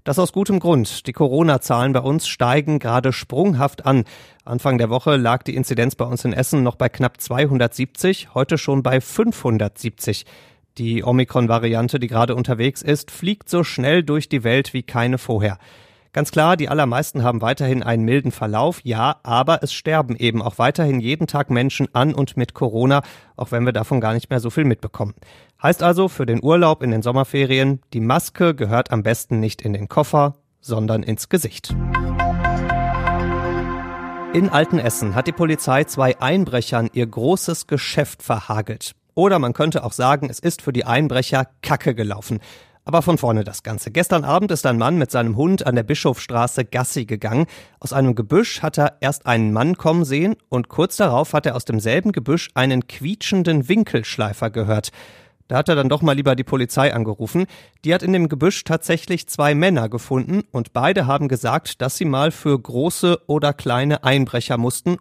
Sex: male